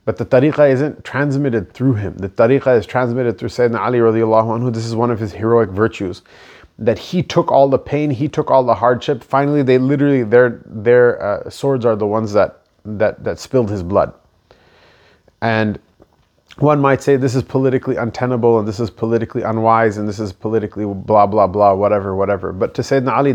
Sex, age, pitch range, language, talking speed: male, 30-49, 110-130 Hz, English, 195 wpm